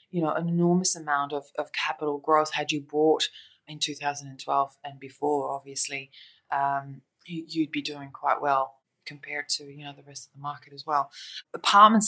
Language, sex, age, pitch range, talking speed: English, female, 20-39, 145-165 Hz, 175 wpm